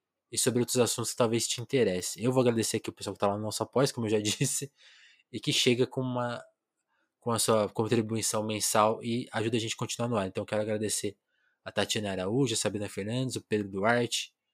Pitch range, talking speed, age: 105-130 Hz, 225 wpm, 20-39